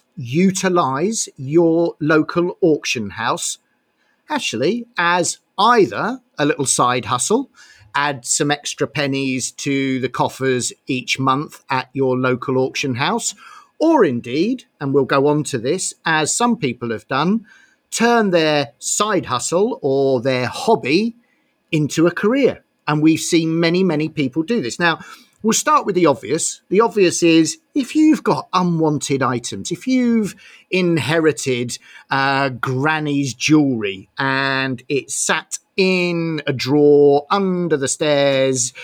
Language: English